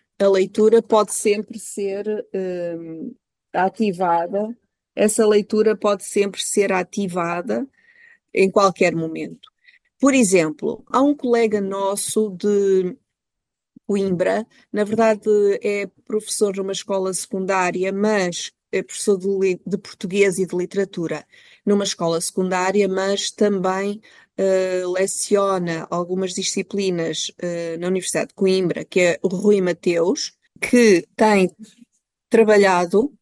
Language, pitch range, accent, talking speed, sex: Portuguese, 185-220 Hz, Brazilian, 105 wpm, female